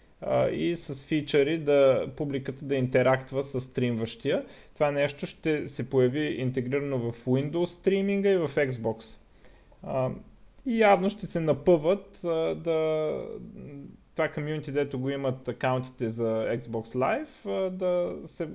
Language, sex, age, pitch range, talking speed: Bulgarian, male, 20-39, 120-160 Hz, 120 wpm